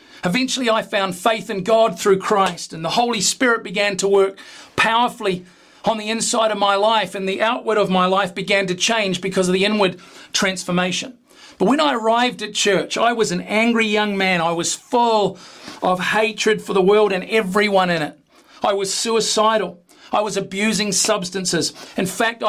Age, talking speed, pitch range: 40-59, 185 wpm, 195-230 Hz